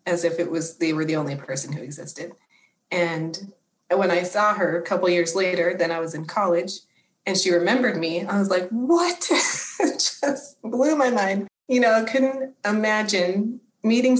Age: 30-49